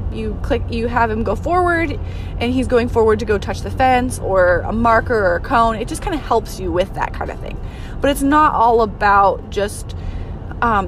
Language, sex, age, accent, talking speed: English, female, 20-39, American, 220 wpm